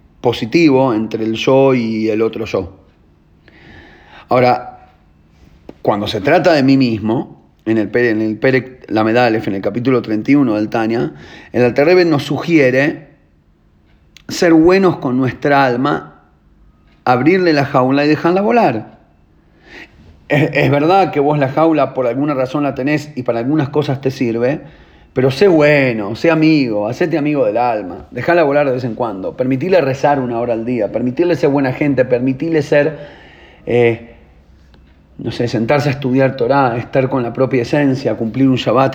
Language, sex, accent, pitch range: Spanish, male, Argentinian, 115-145 Hz